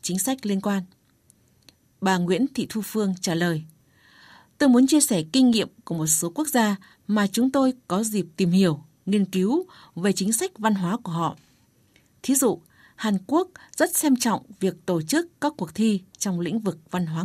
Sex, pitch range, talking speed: female, 175-230 Hz, 195 wpm